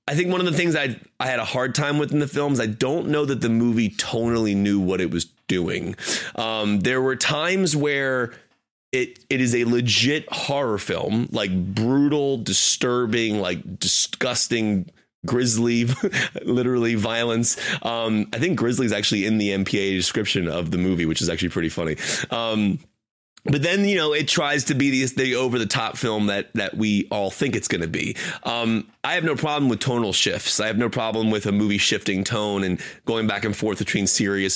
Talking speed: 195 wpm